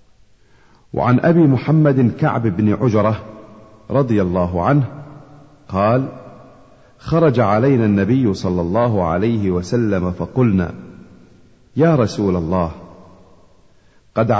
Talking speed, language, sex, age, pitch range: 90 wpm, Arabic, male, 50-69, 95-135 Hz